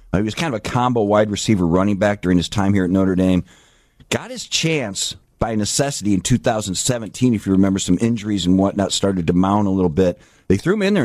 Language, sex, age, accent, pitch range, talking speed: English, male, 50-69, American, 95-115 Hz, 235 wpm